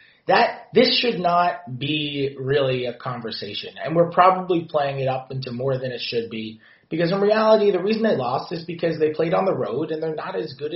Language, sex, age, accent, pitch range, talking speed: English, male, 30-49, American, 110-155 Hz, 220 wpm